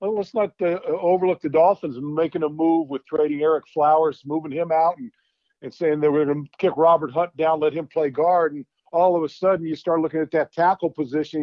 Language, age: English, 50-69